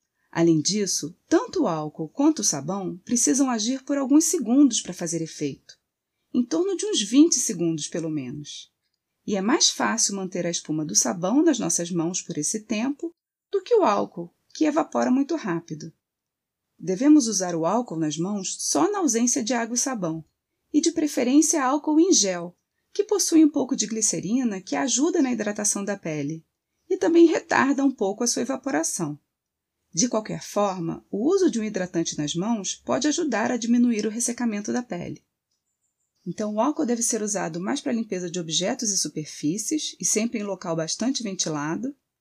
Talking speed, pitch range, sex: 175 wpm, 175-285 Hz, female